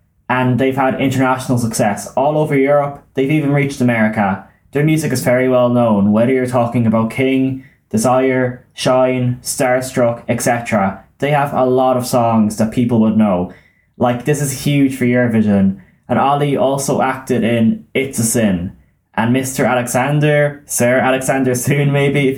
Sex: male